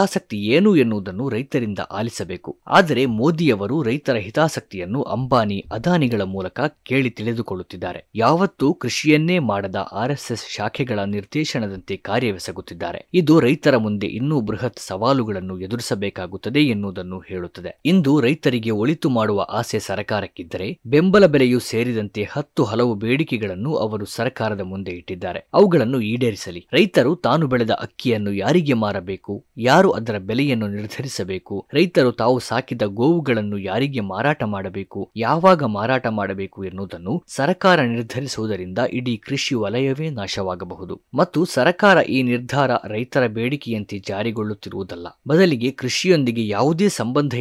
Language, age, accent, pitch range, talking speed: Kannada, 20-39, native, 100-140 Hz, 110 wpm